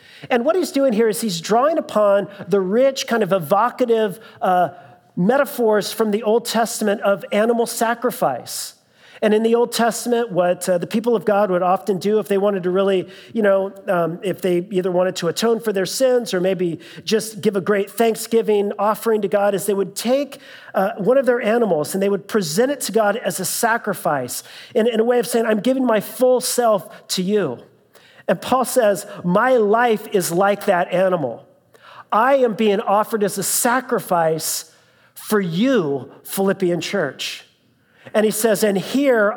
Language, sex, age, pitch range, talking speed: English, male, 40-59, 190-235 Hz, 185 wpm